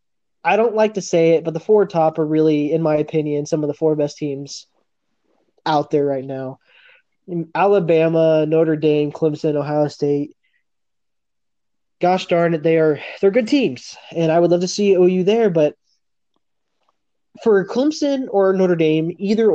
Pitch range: 155-195 Hz